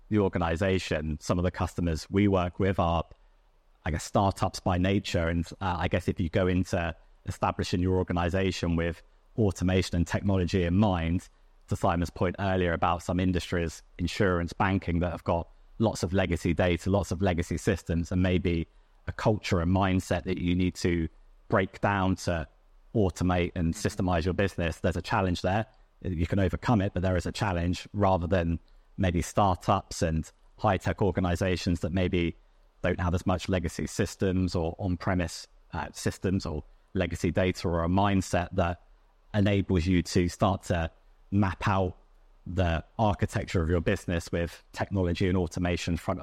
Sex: male